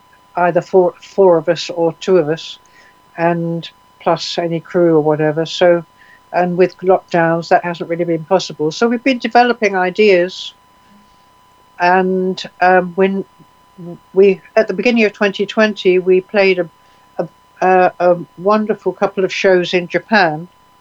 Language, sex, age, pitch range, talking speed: English, female, 60-79, 160-185 Hz, 140 wpm